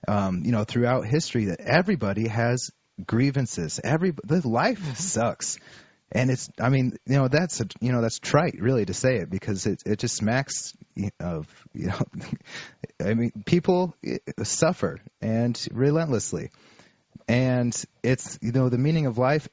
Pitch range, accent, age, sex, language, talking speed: 105-135 Hz, American, 30-49, male, English, 155 wpm